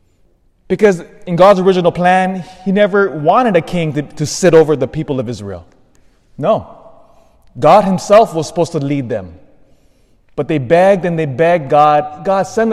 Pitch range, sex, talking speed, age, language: 115-185 Hz, male, 165 wpm, 20-39, English